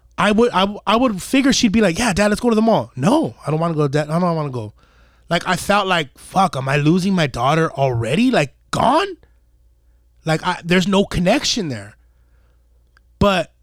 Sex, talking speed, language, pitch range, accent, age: male, 215 wpm, English, 160-260 Hz, American, 20-39